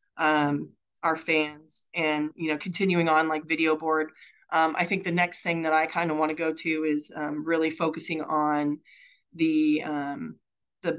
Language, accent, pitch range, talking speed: English, American, 155-165 Hz, 180 wpm